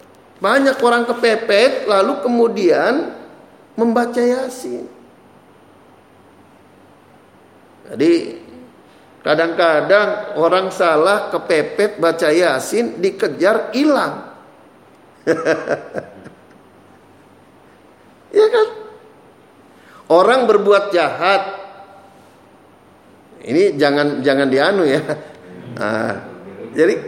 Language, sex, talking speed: Indonesian, male, 60 wpm